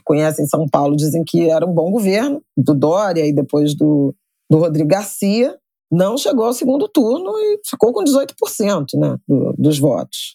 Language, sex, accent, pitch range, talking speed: Portuguese, female, Brazilian, 165-225 Hz, 175 wpm